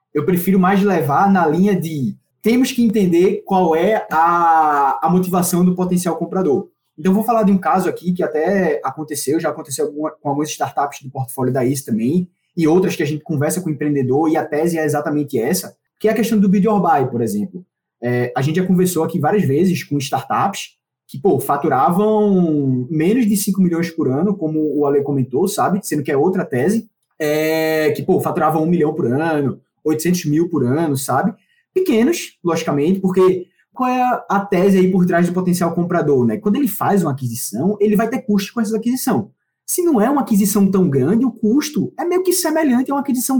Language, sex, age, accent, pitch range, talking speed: Portuguese, male, 20-39, Brazilian, 155-210 Hz, 205 wpm